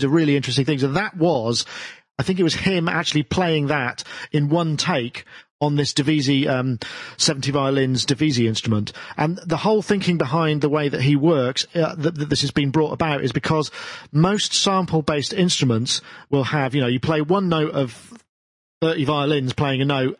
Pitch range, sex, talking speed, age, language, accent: 130-165 Hz, male, 185 wpm, 40-59, English, British